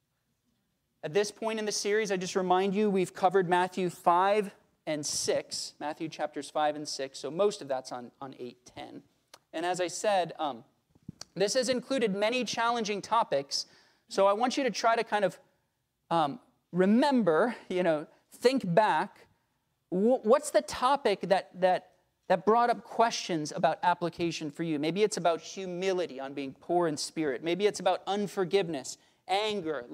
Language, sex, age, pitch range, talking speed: English, male, 30-49, 155-205 Hz, 165 wpm